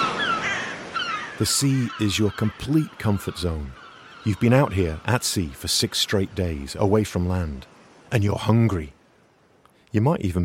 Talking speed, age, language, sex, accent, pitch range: 150 wpm, 50-69, English, male, British, 85-110 Hz